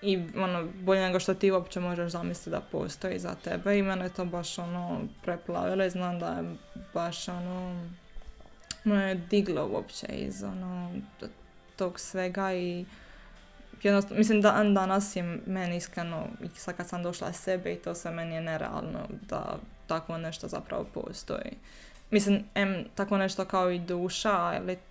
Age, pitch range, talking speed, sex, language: 20-39, 175-195 Hz, 160 wpm, female, Croatian